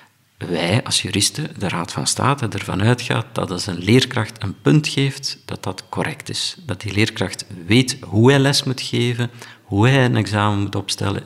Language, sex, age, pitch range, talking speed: Dutch, male, 50-69, 100-130 Hz, 185 wpm